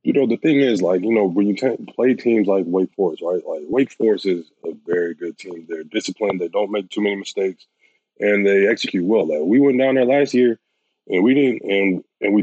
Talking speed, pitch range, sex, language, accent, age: 240 wpm, 90-110 Hz, male, English, American, 20-39